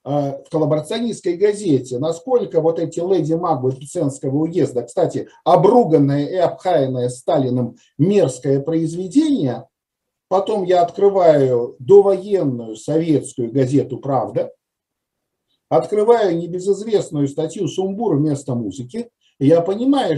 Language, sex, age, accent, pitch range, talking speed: Russian, male, 50-69, native, 145-235 Hz, 90 wpm